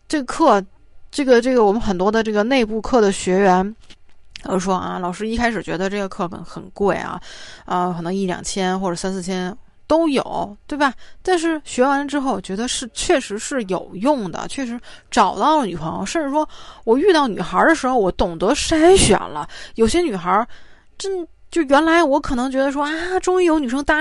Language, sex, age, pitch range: Chinese, female, 20-39, 185-300 Hz